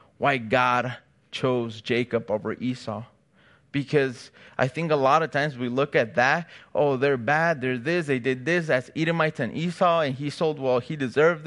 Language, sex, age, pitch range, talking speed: English, male, 20-39, 125-170 Hz, 185 wpm